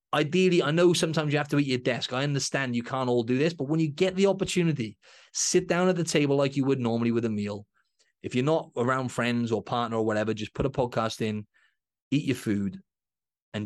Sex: male